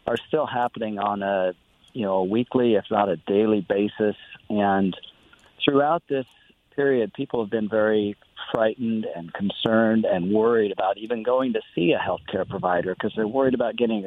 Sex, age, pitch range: male, 40-59, 105-130 Hz